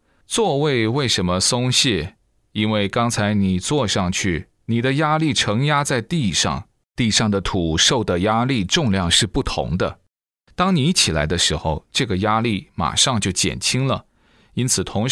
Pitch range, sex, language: 95-125 Hz, male, Chinese